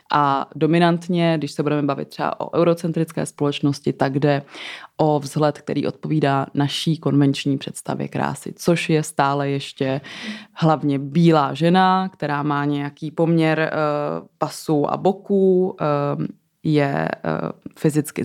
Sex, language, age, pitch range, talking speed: female, Czech, 20-39, 140-165 Hz, 120 wpm